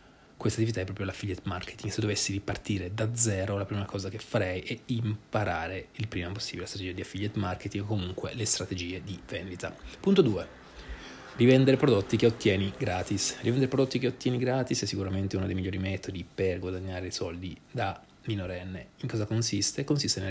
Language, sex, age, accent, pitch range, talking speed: Italian, male, 20-39, native, 95-110 Hz, 180 wpm